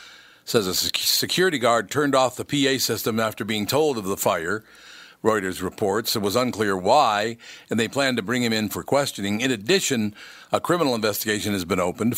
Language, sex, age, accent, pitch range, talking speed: English, male, 50-69, American, 105-125 Hz, 185 wpm